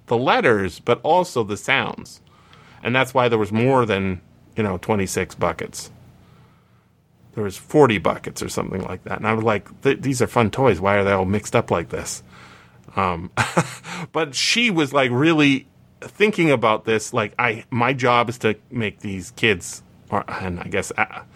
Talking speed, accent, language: 180 wpm, American, English